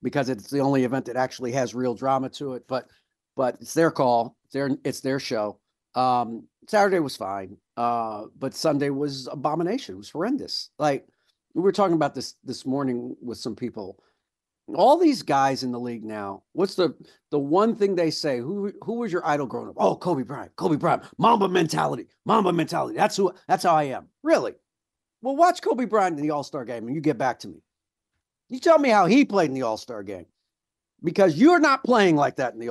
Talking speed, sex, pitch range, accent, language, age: 210 wpm, male, 125-205 Hz, American, English, 40-59